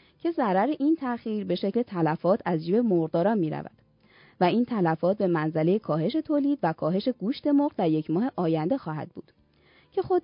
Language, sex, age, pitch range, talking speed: Persian, female, 20-39, 170-260 Hz, 175 wpm